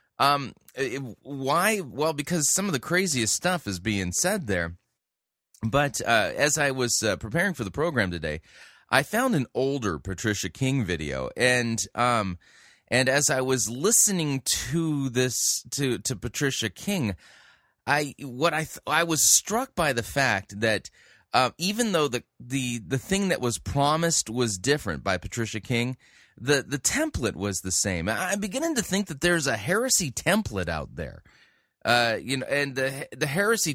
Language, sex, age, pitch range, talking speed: English, male, 30-49, 105-150 Hz, 170 wpm